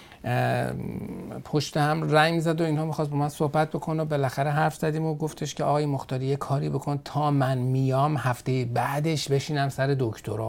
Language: Persian